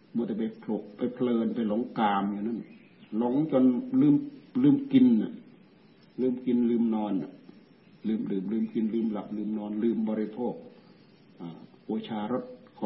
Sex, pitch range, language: male, 110-125 Hz, Thai